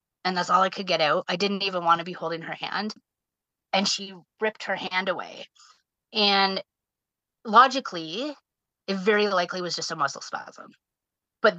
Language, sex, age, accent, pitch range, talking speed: English, female, 30-49, American, 175-210 Hz, 170 wpm